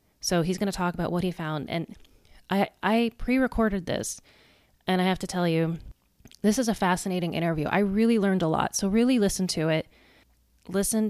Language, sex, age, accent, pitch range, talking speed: English, female, 30-49, American, 160-195 Hz, 195 wpm